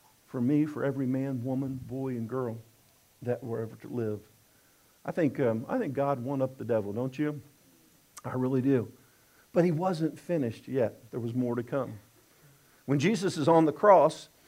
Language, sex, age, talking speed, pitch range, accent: English, male, 50-69, 185 wpm, 130-210 Hz, American